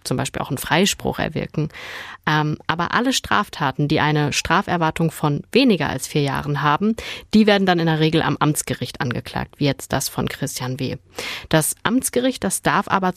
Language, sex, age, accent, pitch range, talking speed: German, female, 30-49, German, 155-195 Hz, 175 wpm